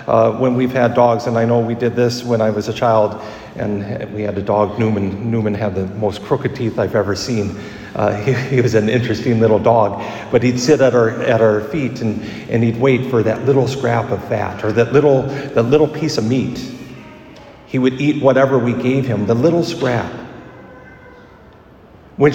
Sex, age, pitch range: male, 50-69, 115-155 Hz